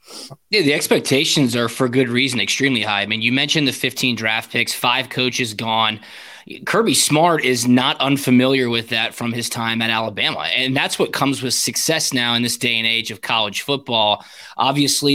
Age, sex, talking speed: 20-39, male, 190 wpm